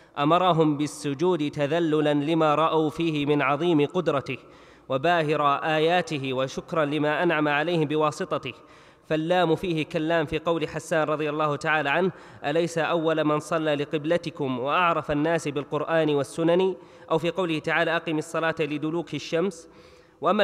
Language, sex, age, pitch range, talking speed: Arabic, male, 20-39, 150-170 Hz, 130 wpm